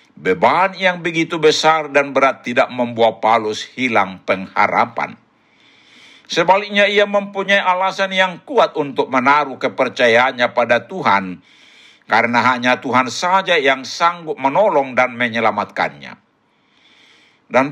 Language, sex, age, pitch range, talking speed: Indonesian, male, 60-79, 125-175 Hz, 110 wpm